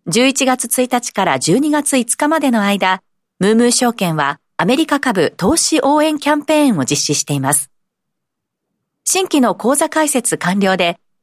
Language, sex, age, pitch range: Japanese, female, 40-59, 180-275 Hz